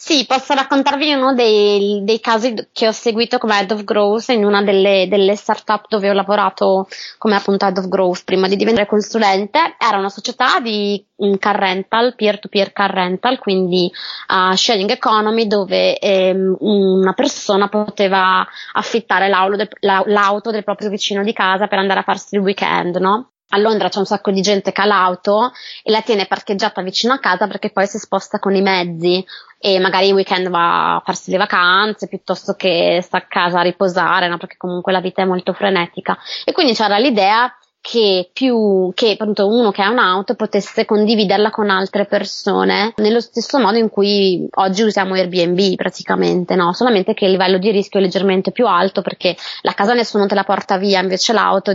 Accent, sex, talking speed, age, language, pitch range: native, female, 185 wpm, 20-39, Italian, 190-220 Hz